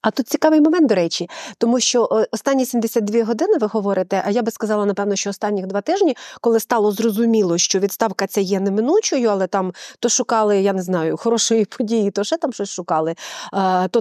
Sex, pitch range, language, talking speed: female, 190-250 Hz, Ukrainian, 195 wpm